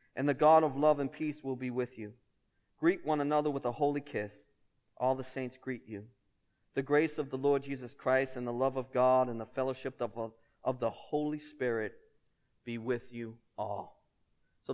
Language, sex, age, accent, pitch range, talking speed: English, male, 40-59, American, 115-140 Hz, 190 wpm